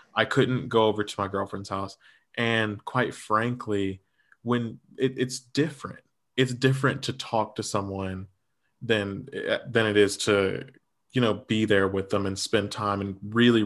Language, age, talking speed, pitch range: English, 20-39, 165 wpm, 100-130 Hz